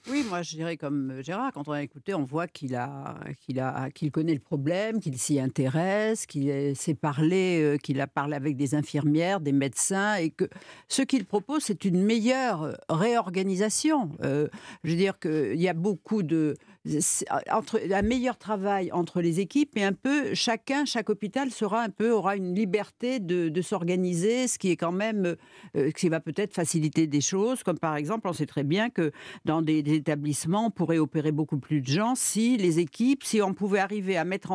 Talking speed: 200 wpm